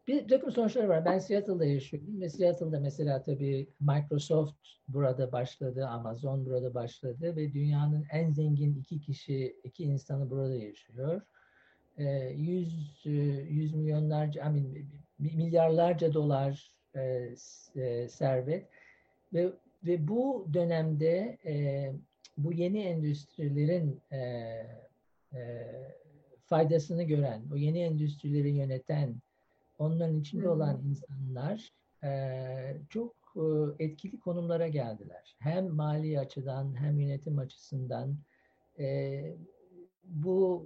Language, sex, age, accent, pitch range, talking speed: Turkish, male, 50-69, native, 135-160 Hz, 95 wpm